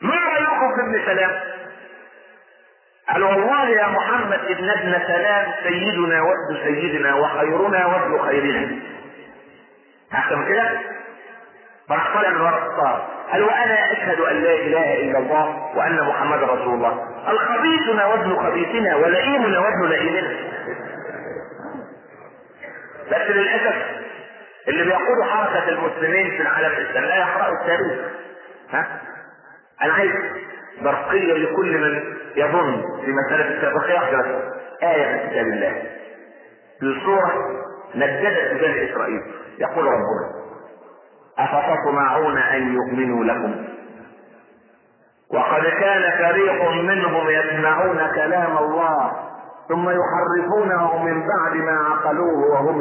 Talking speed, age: 100 wpm, 40-59